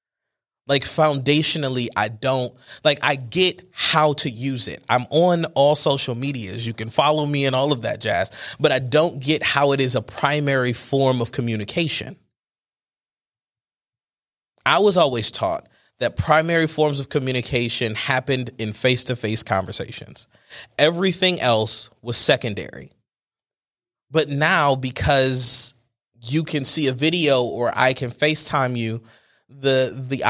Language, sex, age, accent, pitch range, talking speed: English, male, 20-39, American, 120-150 Hz, 135 wpm